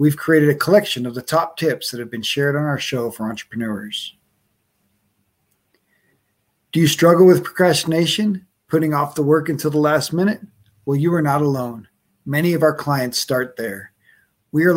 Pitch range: 125-160 Hz